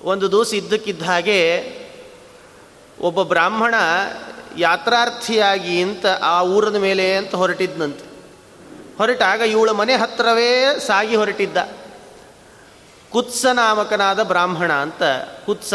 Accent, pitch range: native, 195-245 Hz